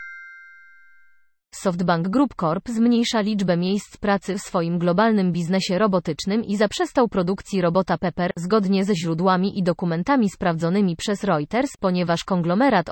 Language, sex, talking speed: Polish, female, 125 wpm